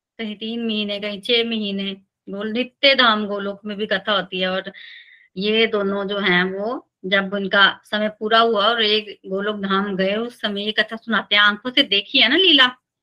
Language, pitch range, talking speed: Hindi, 200-255 Hz, 195 wpm